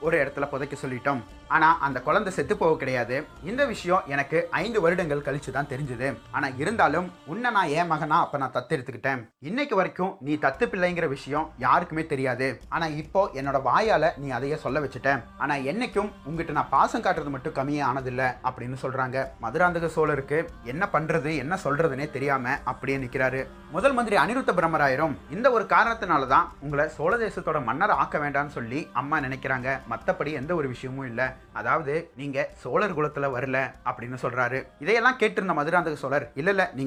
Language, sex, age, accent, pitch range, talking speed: Tamil, male, 30-49, native, 135-175 Hz, 120 wpm